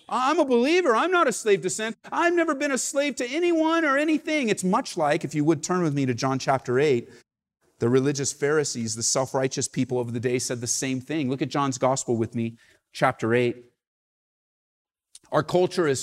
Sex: male